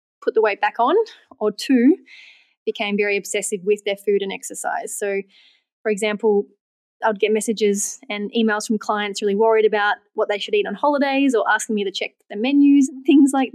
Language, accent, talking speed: English, Australian, 195 wpm